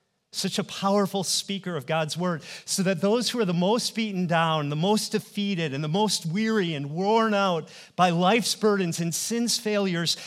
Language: English